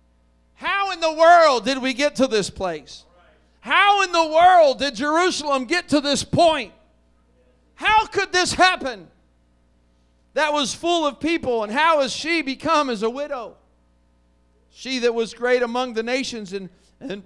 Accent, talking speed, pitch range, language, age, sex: American, 160 wpm, 190-265 Hz, English, 50-69, male